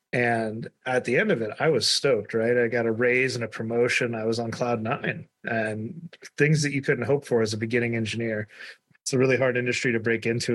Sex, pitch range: male, 110-130 Hz